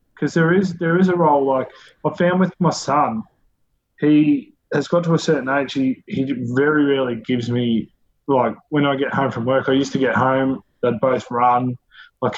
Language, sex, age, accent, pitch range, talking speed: English, male, 20-39, Australian, 125-150 Hz, 205 wpm